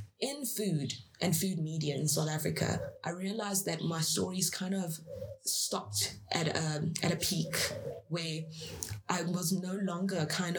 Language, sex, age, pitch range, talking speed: English, female, 20-39, 150-180 Hz, 155 wpm